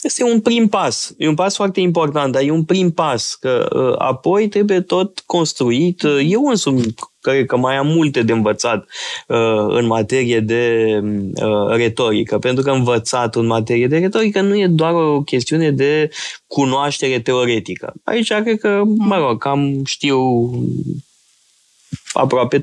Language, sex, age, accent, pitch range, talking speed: Romanian, male, 20-39, native, 115-170 Hz, 145 wpm